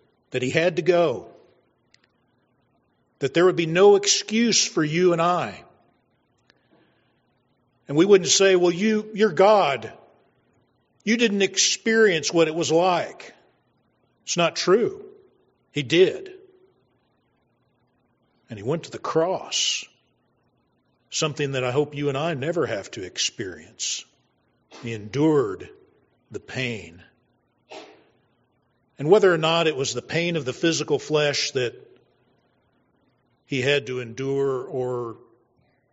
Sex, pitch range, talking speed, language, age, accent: male, 120-175 Hz, 120 wpm, English, 50-69, American